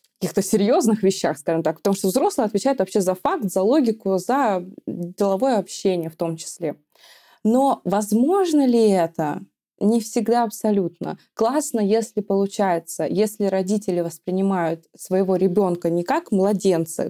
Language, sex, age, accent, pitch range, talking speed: Russian, female, 20-39, native, 180-220 Hz, 135 wpm